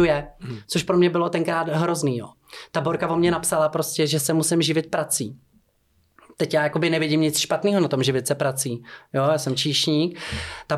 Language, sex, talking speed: Czech, male, 190 wpm